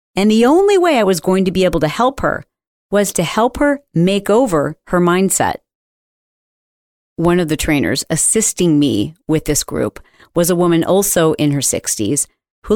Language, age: English, 40-59